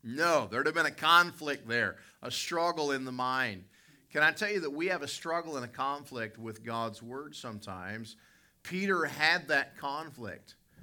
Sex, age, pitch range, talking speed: male, 50-69, 105-140 Hz, 185 wpm